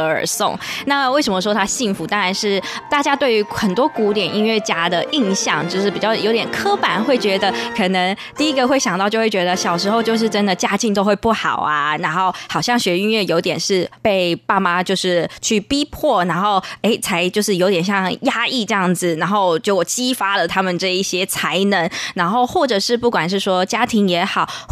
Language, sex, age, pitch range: Chinese, female, 20-39, 185-240 Hz